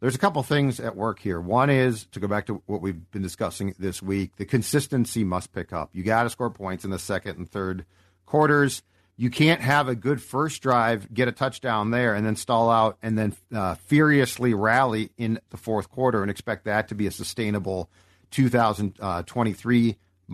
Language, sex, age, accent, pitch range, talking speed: English, male, 50-69, American, 100-125 Hz, 200 wpm